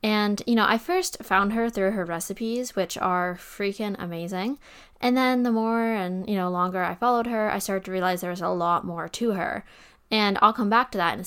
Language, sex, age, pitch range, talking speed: English, female, 10-29, 180-225 Hz, 235 wpm